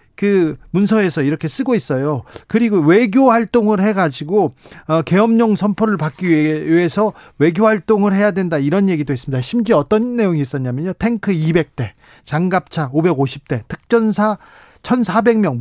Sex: male